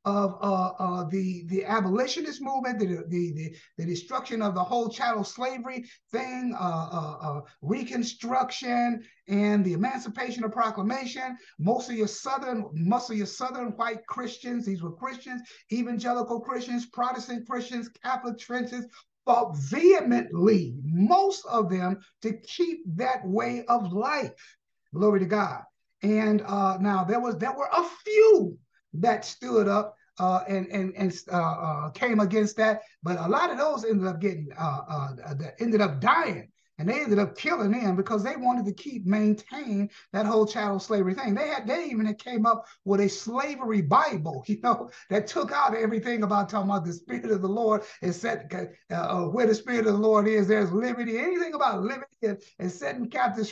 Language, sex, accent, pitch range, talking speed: English, male, American, 195-245 Hz, 170 wpm